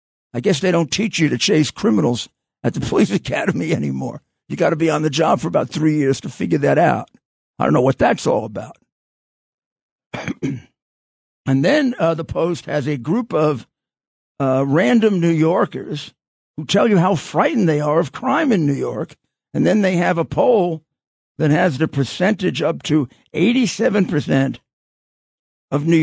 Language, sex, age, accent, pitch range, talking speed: English, male, 50-69, American, 130-170 Hz, 175 wpm